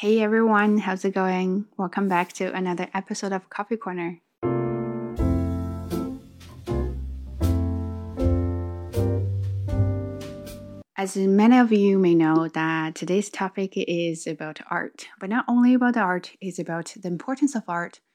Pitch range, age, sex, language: 160-210 Hz, 20-39, female, Chinese